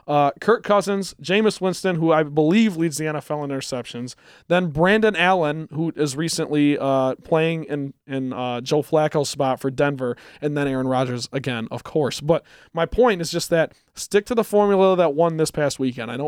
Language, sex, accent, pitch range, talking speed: English, male, American, 145-175 Hz, 195 wpm